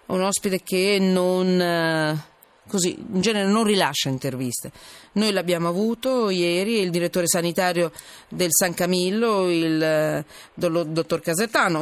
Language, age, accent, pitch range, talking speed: Italian, 40-59, native, 175-230 Hz, 120 wpm